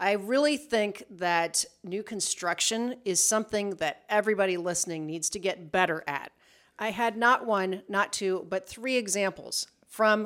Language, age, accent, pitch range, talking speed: English, 40-59, American, 180-235 Hz, 150 wpm